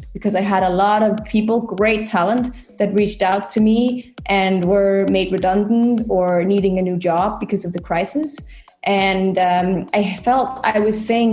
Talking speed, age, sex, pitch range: 180 wpm, 20-39, female, 195-220 Hz